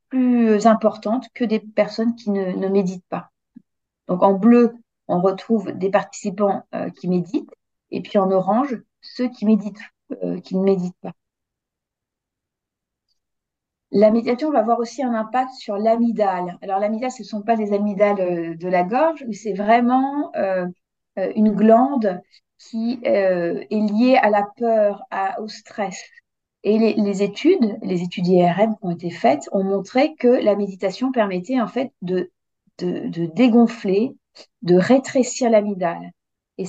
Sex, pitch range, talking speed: female, 190-230 Hz, 155 wpm